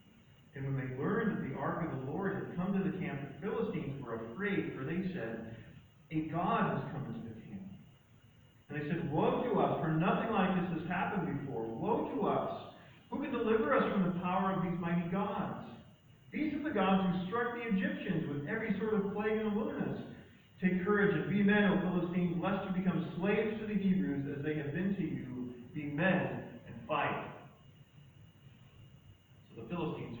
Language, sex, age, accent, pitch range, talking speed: English, male, 40-59, American, 140-190 Hz, 190 wpm